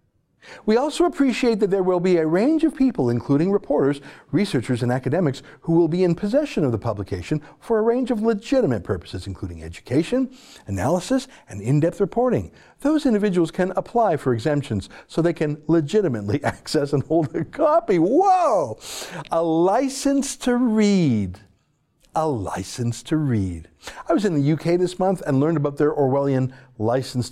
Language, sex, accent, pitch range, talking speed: English, male, American, 130-210 Hz, 160 wpm